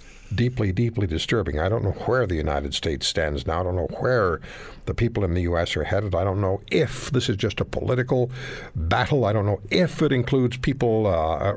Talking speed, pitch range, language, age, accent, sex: 215 wpm, 95-140 Hz, English, 60-79, American, male